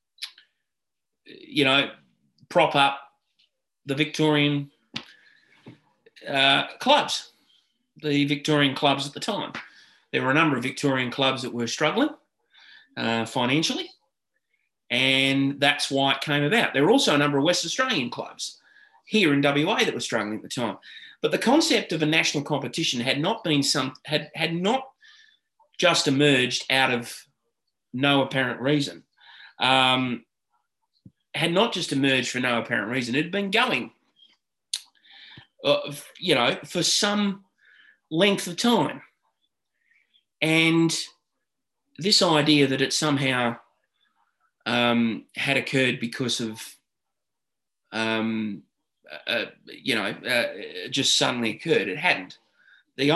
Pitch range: 125-170 Hz